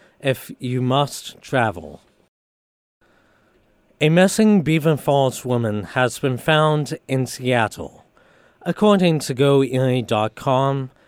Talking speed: 90 wpm